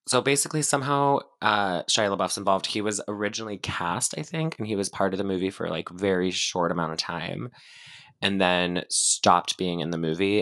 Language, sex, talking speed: English, male, 200 wpm